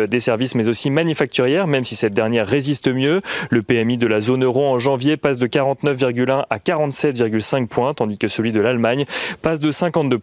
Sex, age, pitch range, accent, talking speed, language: male, 30-49, 115-145 Hz, French, 195 wpm, French